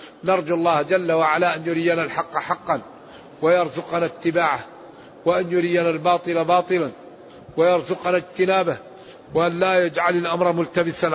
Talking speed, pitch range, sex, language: 115 wpm, 160-190 Hz, male, Arabic